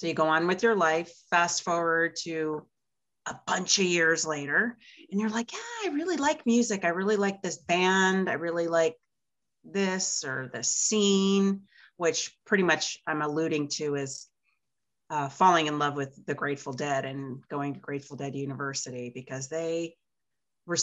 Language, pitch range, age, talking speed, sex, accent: English, 140-200 Hz, 30-49, 170 wpm, female, American